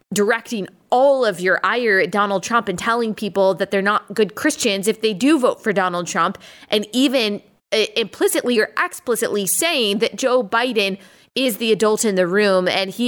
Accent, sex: American, female